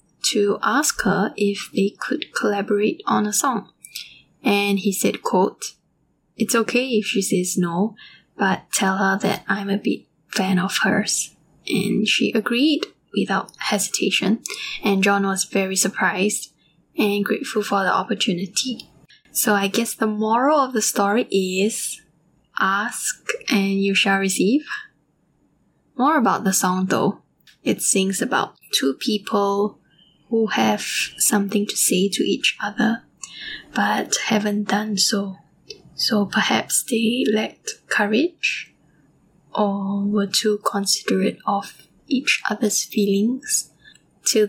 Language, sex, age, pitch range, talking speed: English, female, 10-29, 195-225 Hz, 125 wpm